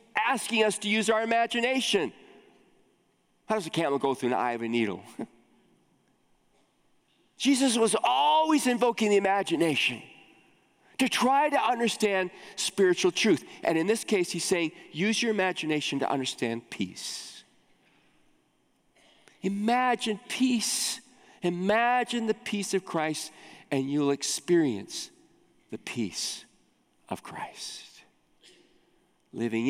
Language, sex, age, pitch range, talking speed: English, male, 40-59, 140-230 Hz, 115 wpm